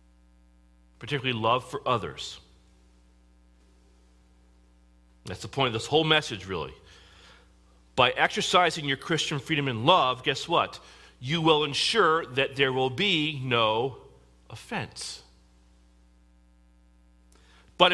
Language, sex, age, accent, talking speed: English, male, 40-59, American, 105 wpm